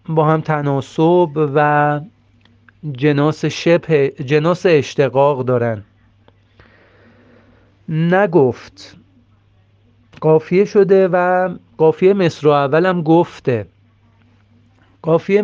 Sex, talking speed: male, 80 wpm